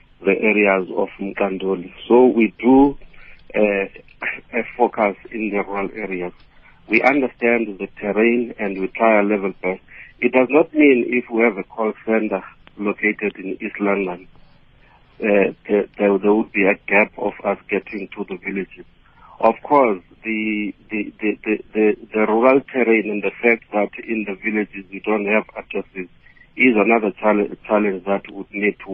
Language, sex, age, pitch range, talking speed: English, male, 50-69, 100-115 Hz, 170 wpm